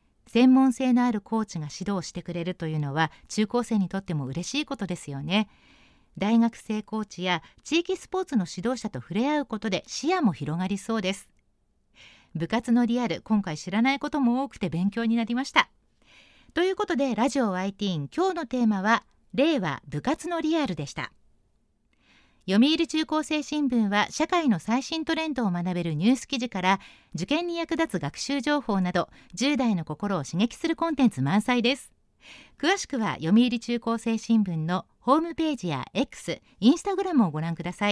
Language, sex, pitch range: Japanese, female, 190-280 Hz